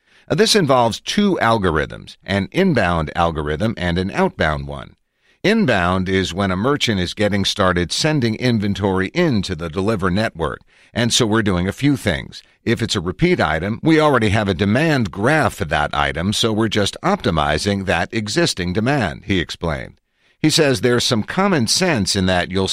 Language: English